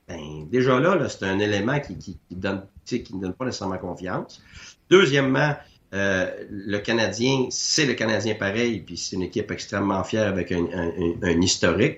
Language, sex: French, male